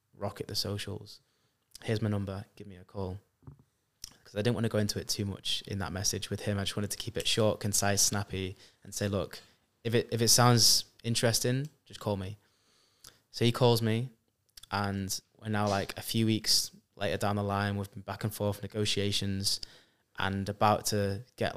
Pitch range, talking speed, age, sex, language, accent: 100-115 Hz, 200 wpm, 20-39, male, English, British